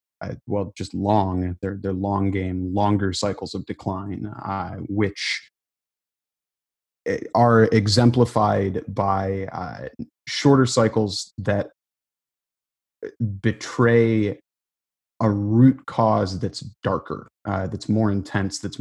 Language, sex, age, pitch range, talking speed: English, male, 30-49, 95-105 Hz, 100 wpm